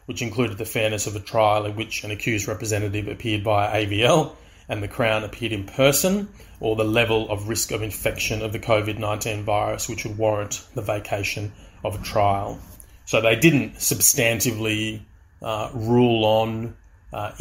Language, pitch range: English, 105-115 Hz